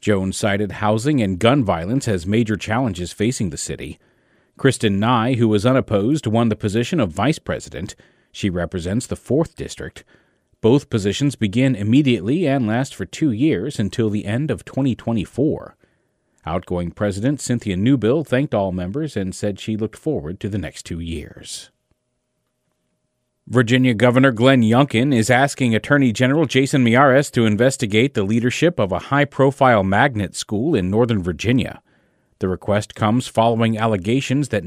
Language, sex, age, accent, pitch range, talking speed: English, male, 40-59, American, 100-130 Hz, 150 wpm